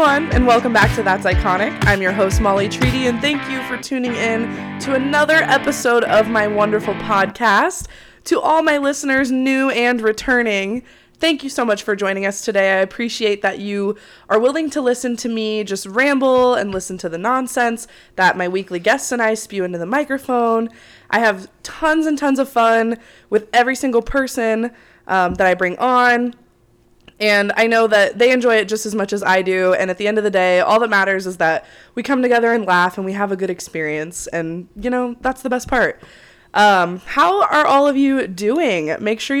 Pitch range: 190-250 Hz